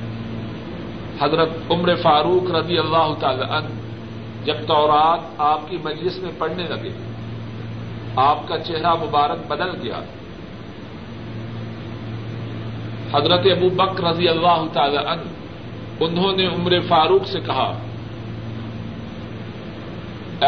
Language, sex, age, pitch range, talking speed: Urdu, male, 50-69, 115-170 Hz, 100 wpm